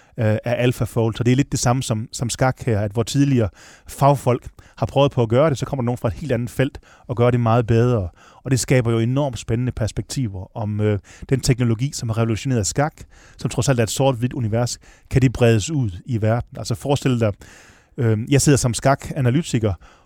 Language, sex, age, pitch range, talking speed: Danish, male, 30-49, 115-135 Hz, 215 wpm